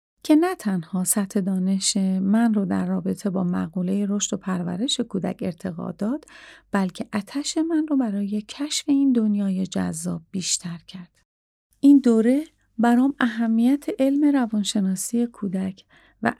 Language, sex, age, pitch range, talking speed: Persian, female, 40-59, 190-235 Hz, 130 wpm